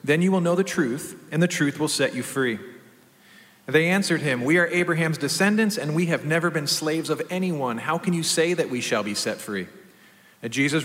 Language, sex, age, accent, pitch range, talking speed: English, male, 40-59, American, 140-175 Hz, 215 wpm